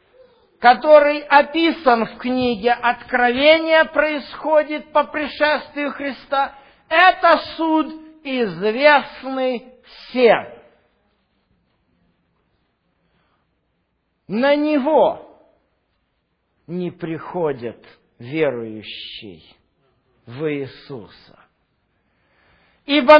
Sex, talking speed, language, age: male, 55 wpm, English, 50-69